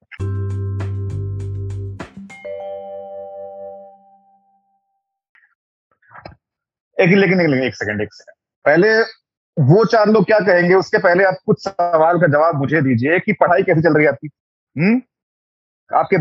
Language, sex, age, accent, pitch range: Hindi, male, 30-49, native, 150-225 Hz